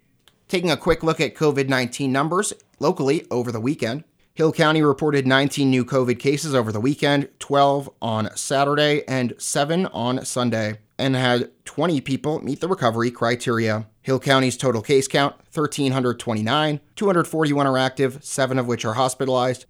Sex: male